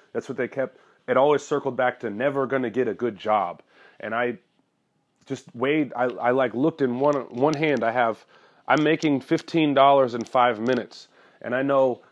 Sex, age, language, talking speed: male, 30-49, English, 195 wpm